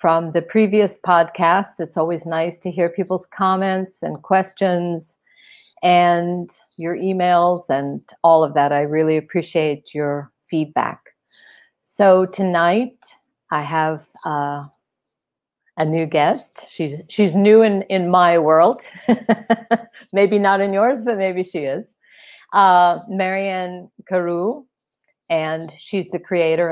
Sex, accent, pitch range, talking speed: female, American, 160-195 Hz, 125 wpm